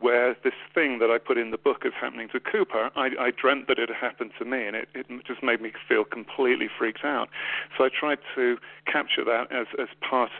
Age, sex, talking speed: 40-59, male, 235 wpm